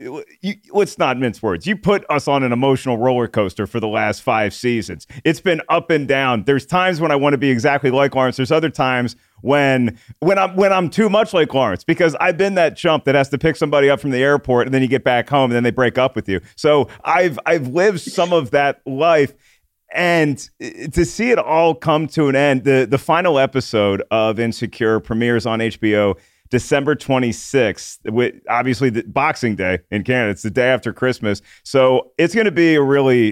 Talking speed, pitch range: 210 wpm, 110-145 Hz